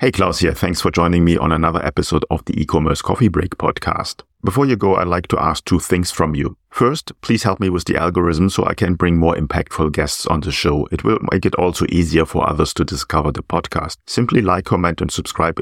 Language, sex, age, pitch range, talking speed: English, male, 40-59, 85-110 Hz, 235 wpm